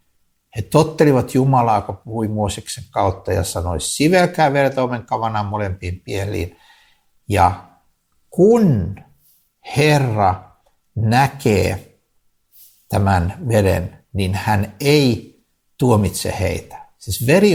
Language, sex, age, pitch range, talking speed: Finnish, male, 60-79, 95-140 Hz, 95 wpm